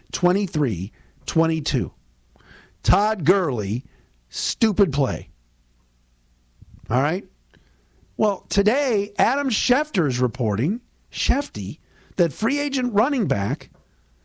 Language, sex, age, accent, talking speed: English, male, 50-69, American, 75 wpm